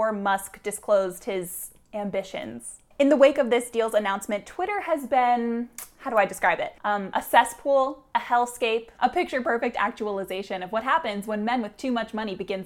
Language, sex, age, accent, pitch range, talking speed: English, female, 10-29, American, 205-270 Hz, 175 wpm